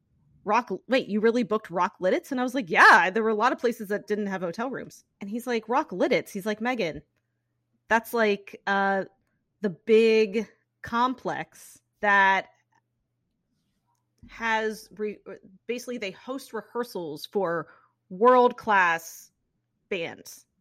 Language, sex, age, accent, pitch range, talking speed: English, female, 30-49, American, 190-235 Hz, 135 wpm